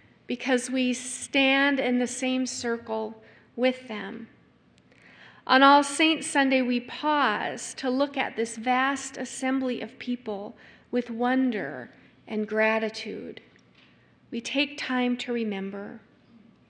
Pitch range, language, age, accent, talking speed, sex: 225-270 Hz, English, 40-59, American, 115 wpm, female